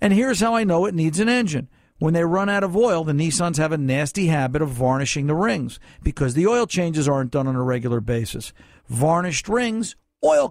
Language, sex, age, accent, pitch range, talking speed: English, male, 50-69, American, 145-200 Hz, 215 wpm